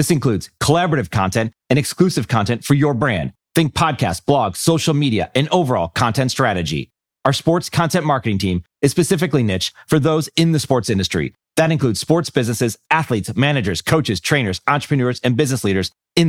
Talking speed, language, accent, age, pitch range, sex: 170 wpm, English, American, 30-49, 110-150 Hz, male